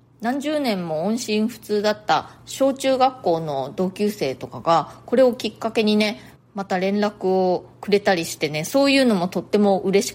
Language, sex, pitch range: Japanese, female, 180-280 Hz